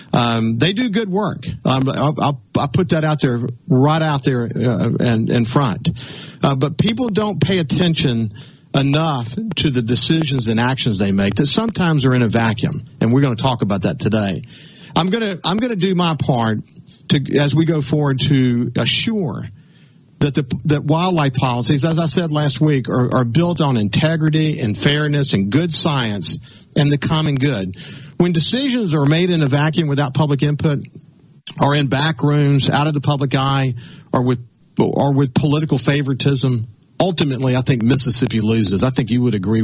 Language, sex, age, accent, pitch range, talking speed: English, male, 50-69, American, 120-160 Hz, 185 wpm